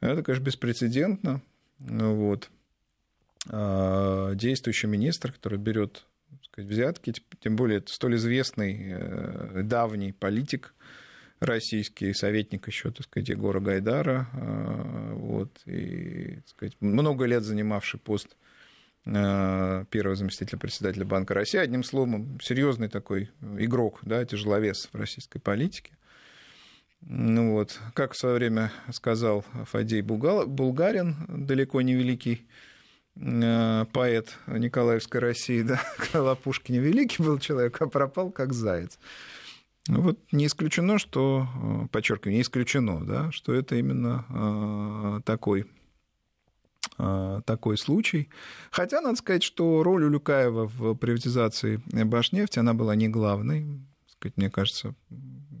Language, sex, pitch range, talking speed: Russian, male, 105-135 Hz, 115 wpm